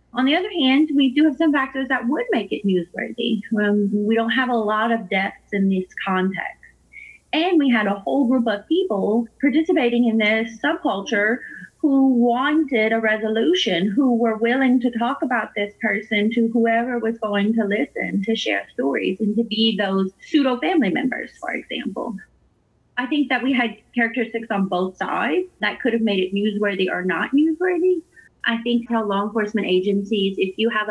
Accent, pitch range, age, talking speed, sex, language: American, 190-235 Hz, 30-49, 185 wpm, female, English